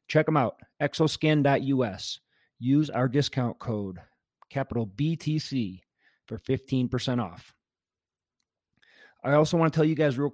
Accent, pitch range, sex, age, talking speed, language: American, 120-155 Hz, male, 30-49, 120 wpm, English